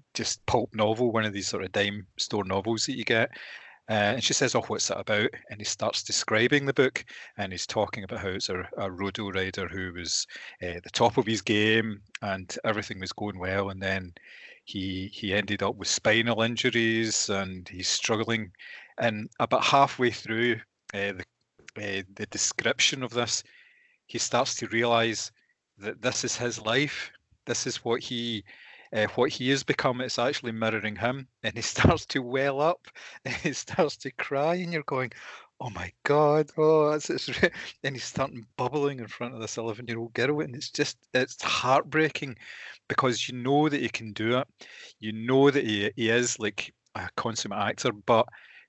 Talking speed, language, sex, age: 190 wpm, English, male, 30-49